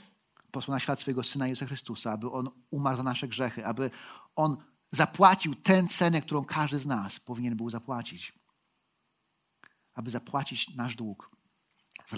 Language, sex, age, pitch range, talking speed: Polish, male, 40-59, 130-190 Hz, 145 wpm